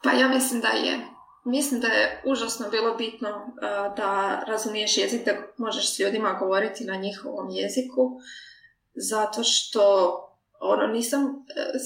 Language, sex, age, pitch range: Croatian, female, 20-39, 205-255 Hz